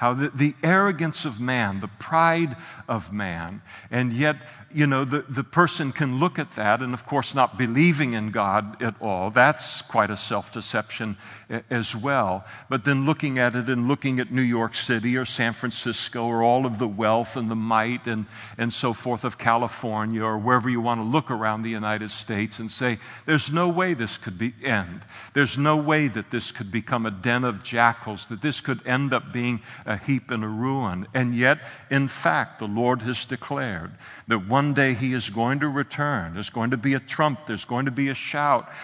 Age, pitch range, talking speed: 50-69, 115-140 Hz, 205 wpm